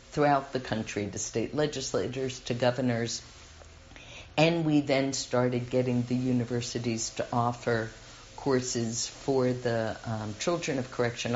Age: 50-69